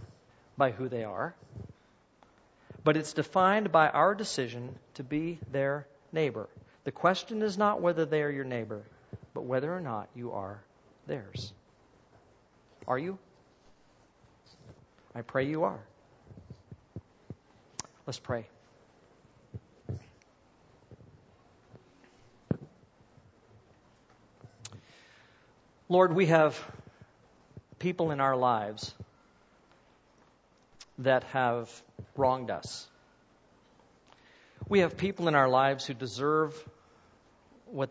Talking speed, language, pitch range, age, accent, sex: 90 wpm, English, 120-155 Hz, 50-69, American, male